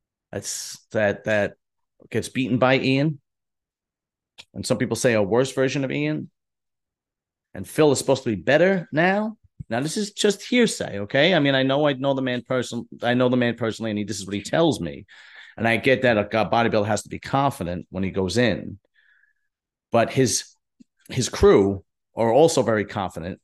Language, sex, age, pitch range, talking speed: English, male, 40-59, 105-140 Hz, 190 wpm